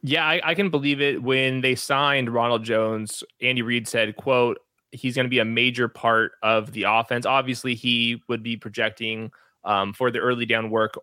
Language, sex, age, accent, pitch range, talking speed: English, male, 20-39, American, 115-145 Hz, 195 wpm